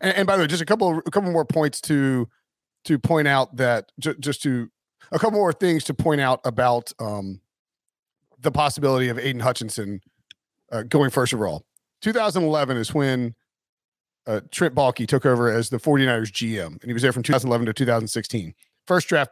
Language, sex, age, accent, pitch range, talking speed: English, male, 40-59, American, 125-160 Hz, 180 wpm